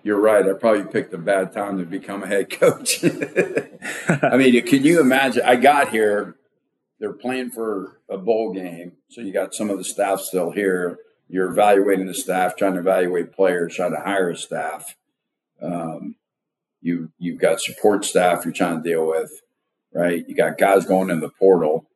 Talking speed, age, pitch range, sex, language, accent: 190 wpm, 50-69, 90-120 Hz, male, English, American